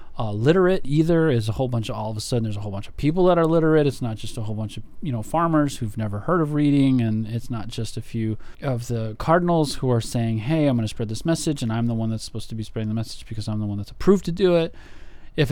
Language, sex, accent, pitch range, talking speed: English, male, American, 110-135 Hz, 295 wpm